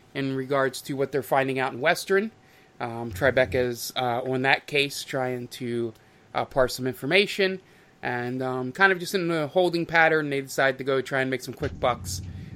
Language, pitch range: English, 125-155 Hz